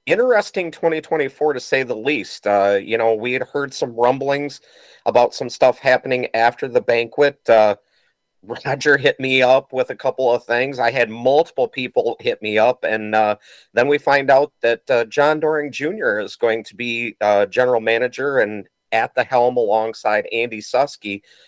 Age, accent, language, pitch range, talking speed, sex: 40-59, American, English, 110-135 Hz, 175 wpm, male